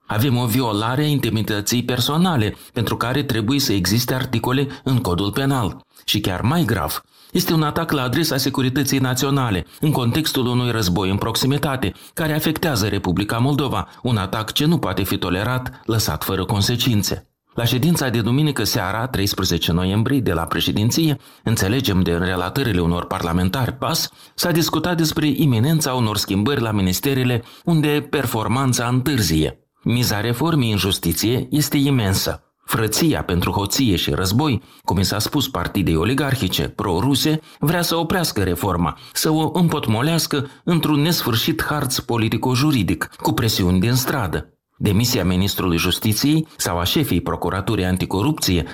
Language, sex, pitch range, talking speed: Romanian, male, 95-145 Hz, 140 wpm